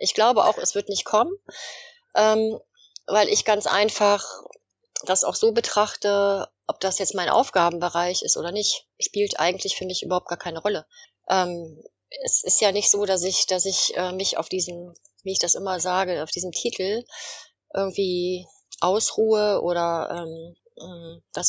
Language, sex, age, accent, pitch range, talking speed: German, female, 30-49, German, 180-215 Hz, 165 wpm